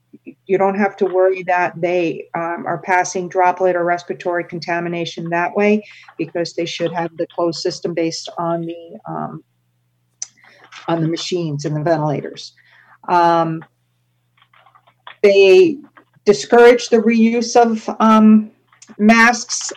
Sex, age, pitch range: female, 40-59, 175-205 Hz